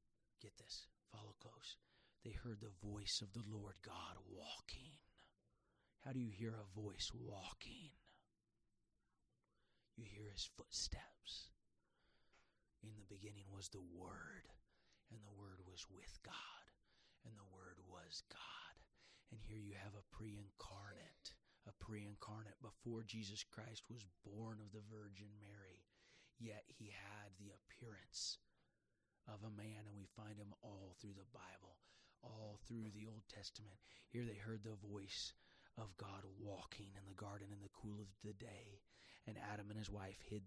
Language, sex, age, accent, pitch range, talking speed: English, male, 40-59, American, 100-115 Hz, 155 wpm